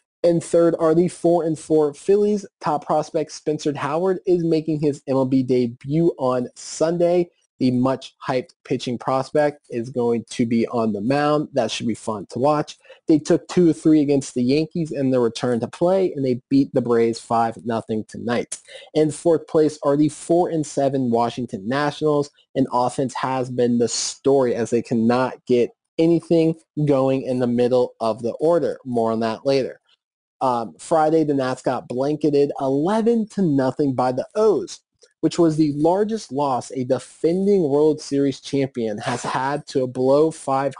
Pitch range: 125-155 Hz